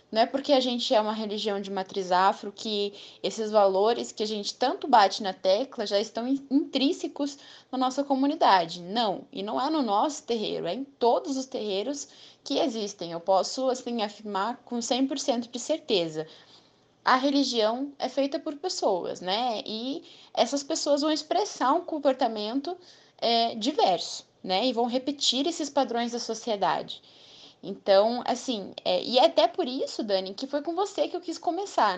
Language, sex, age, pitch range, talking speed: Portuguese, female, 10-29, 215-280 Hz, 165 wpm